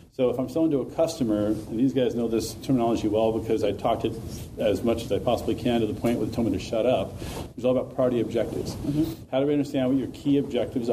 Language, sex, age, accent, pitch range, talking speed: English, male, 40-59, American, 115-155 Hz, 270 wpm